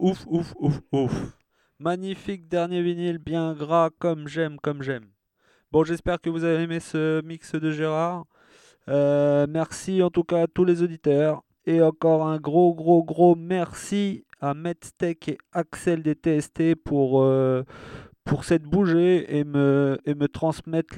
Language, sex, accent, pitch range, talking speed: French, male, French, 135-165 Hz, 155 wpm